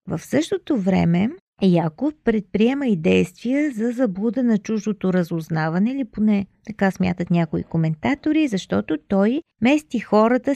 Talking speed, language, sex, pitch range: 125 wpm, Bulgarian, female, 180-260 Hz